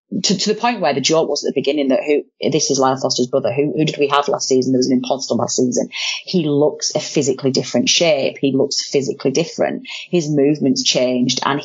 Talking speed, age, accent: 230 wpm, 30-49, British